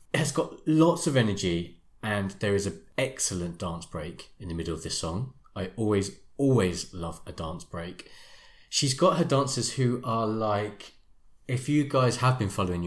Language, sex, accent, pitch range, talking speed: English, male, British, 95-135 Hz, 175 wpm